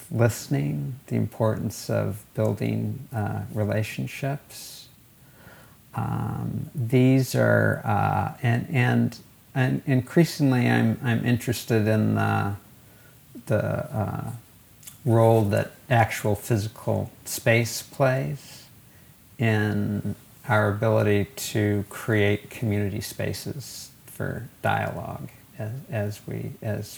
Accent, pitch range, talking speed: American, 105-130 Hz, 90 wpm